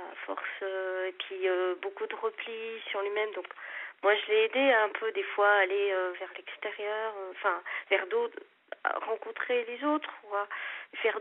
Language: French